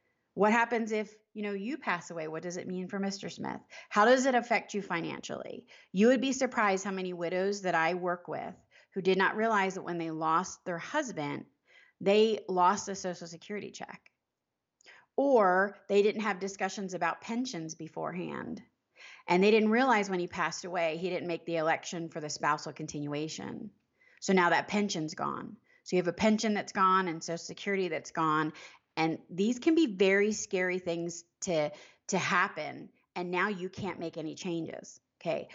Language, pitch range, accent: English, 170-210 Hz, American